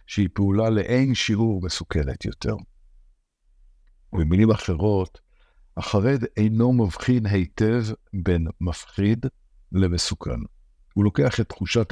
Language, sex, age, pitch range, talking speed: Hebrew, male, 60-79, 85-115 Hz, 95 wpm